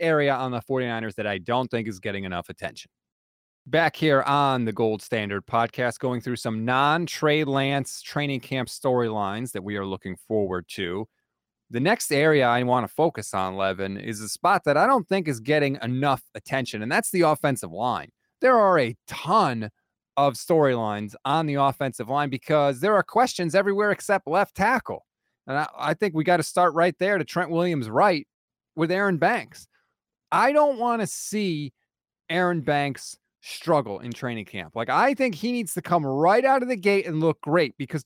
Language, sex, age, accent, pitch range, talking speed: English, male, 30-49, American, 125-185 Hz, 190 wpm